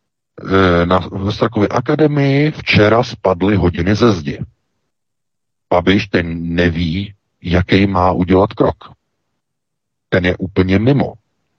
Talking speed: 100 wpm